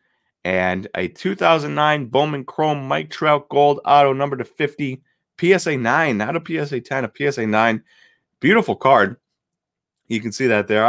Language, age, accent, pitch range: English, 30-49, American, 95-130 Hz